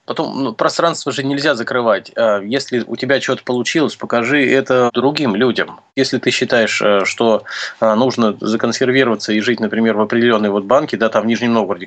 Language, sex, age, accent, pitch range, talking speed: Russian, male, 20-39, native, 110-135 Hz, 165 wpm